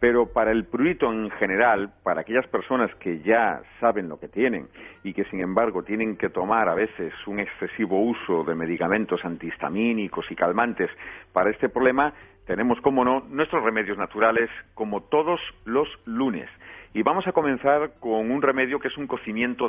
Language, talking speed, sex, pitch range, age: Spanish, 170 wpm, male, 100-130 Hz, 50-69